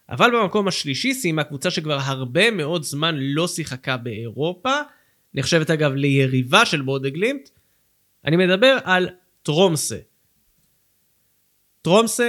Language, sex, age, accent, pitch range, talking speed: Hebrew, male, 30-49, native, 140-205 Hz, 110 wpm